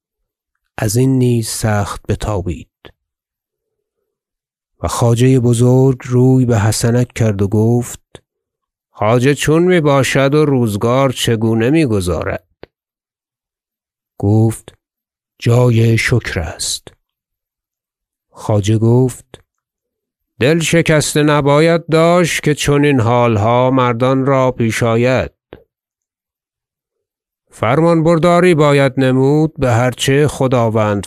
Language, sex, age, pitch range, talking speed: Persian, male, 50-69, 115-145 Hz, 95 wpm